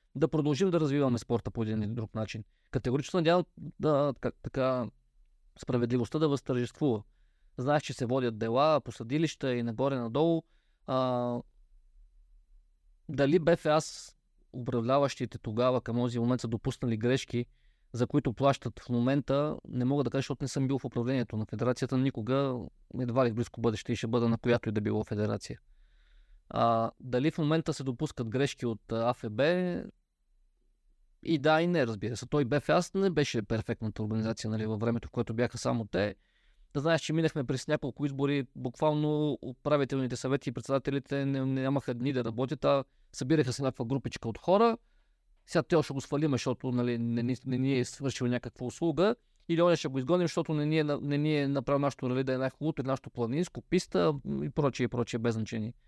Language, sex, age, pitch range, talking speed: Bulgarian, male, 20-39, 120-145 Hz, 170 wpm